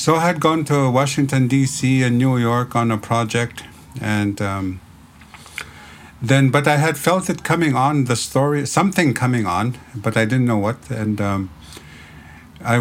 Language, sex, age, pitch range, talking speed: French, male, 50-69, 95-120 Hz, 170 wpm